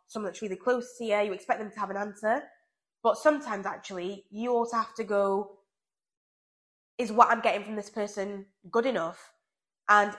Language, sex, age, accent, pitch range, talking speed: English, female, 20-39, British, 190-230 Hz, 185 wpm